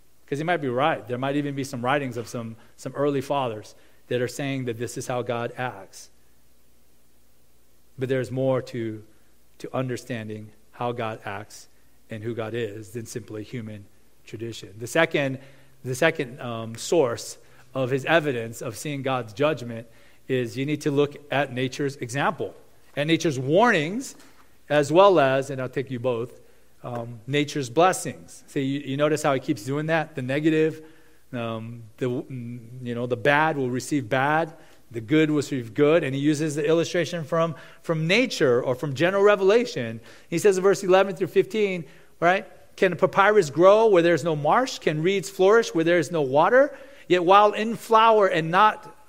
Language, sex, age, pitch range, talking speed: English, male, 40-59, 125-170 Hz, 175 wpm